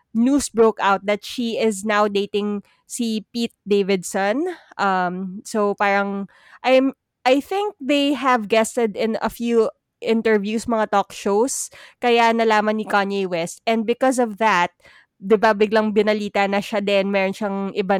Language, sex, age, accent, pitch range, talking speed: Filipino, female, 20-39, native, 195-240 Hz, 155 wpm